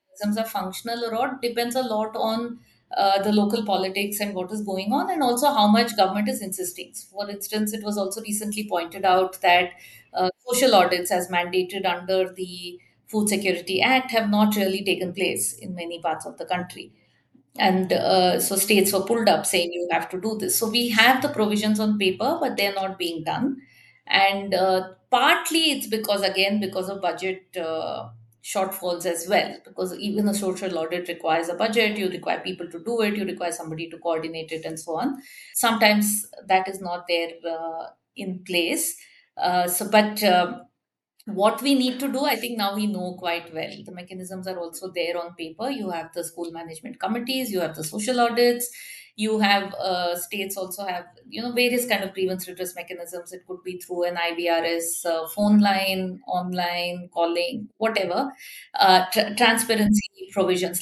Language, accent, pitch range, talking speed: English, Indian, 180-220 Hz, 185 wpm